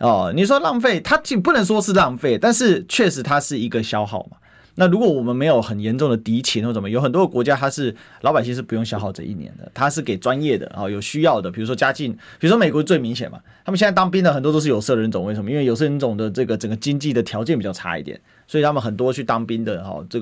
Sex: male